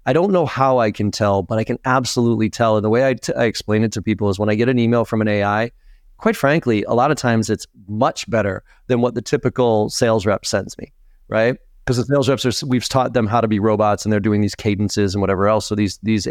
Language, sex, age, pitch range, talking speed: English, male, 30-49, 105-130 Hz, 265 wpm